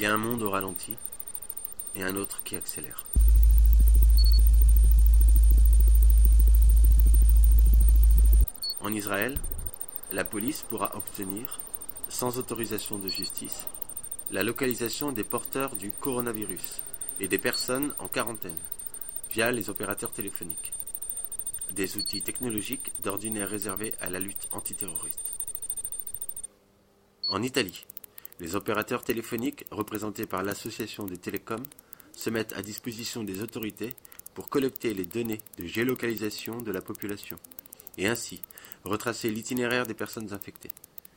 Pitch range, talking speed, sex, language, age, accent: 90-115 Hz, 115 wpm, male, French, 30-49, French